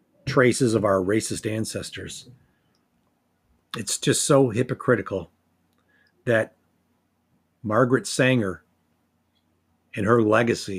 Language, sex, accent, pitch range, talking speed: English, male, American, 85-120 Hz, 85 wpm